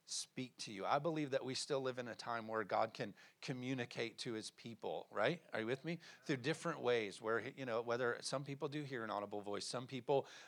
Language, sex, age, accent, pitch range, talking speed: English, male, 40-59, American, 115-145 Hz, 230 wpm